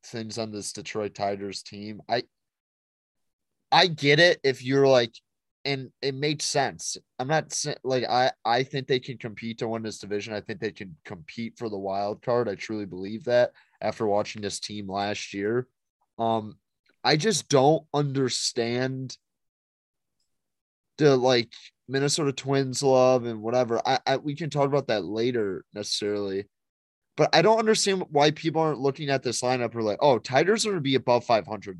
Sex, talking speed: male, 175 wpm